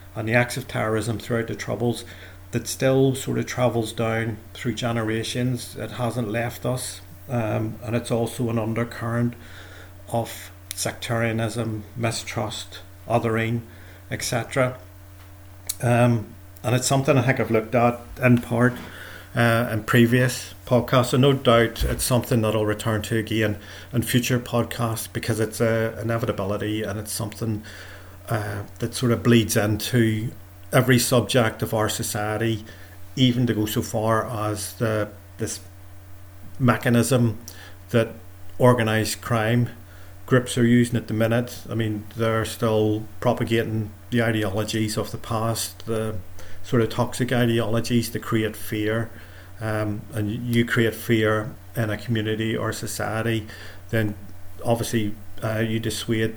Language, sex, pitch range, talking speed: English, male, 105-120 Hz, 135 wpm